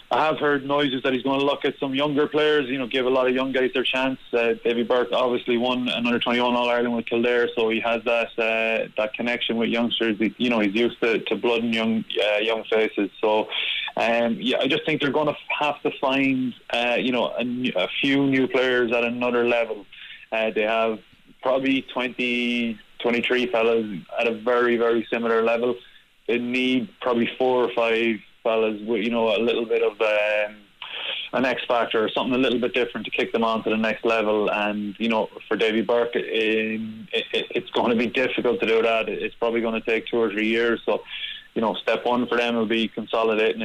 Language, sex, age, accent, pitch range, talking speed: English, male, 20-39, Irish, 110-125 Hz, 220 wpm